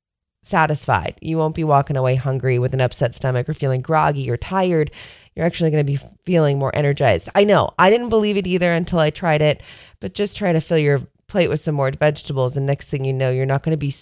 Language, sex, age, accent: English, female, 20-39, American